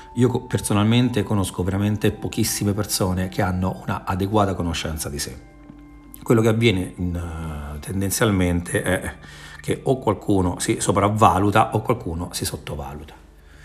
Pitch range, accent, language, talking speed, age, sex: 85-105 Hz, native, Italian, 130 wpm, 40-59, male